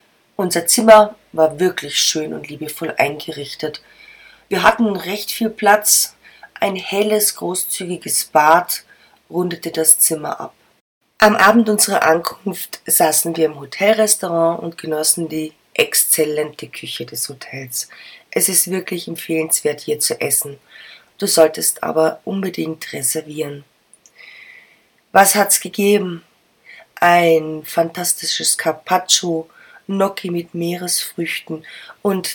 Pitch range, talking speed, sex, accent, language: 160-205 Hz, 110 wpm, female, German, German